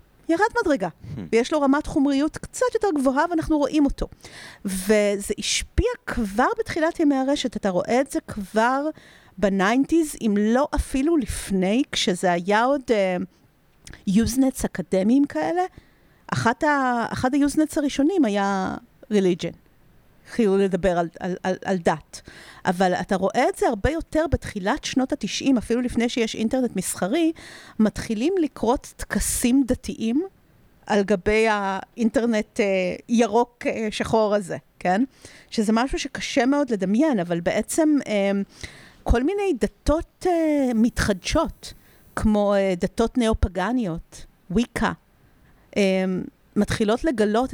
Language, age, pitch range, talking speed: Hebrew, 40-59, 200-285 Hz, 120 wpm